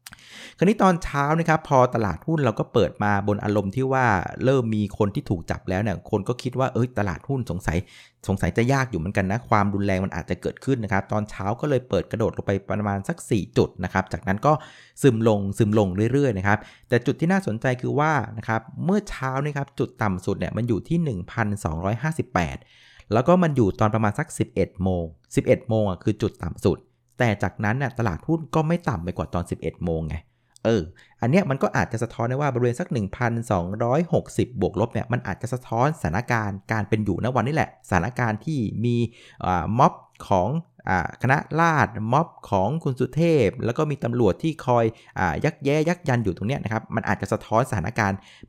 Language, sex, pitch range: Thai, male, 100-130 Hz